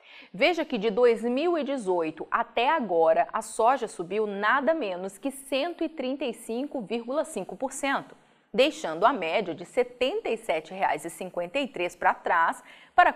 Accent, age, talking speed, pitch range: Brazilian, 30-49, 100 wpm, 200-300 Hz